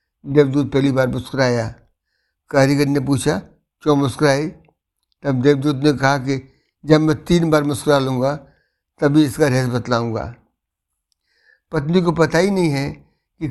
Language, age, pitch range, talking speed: Hindi, 60-79, 130-150 Hz, 140 wpm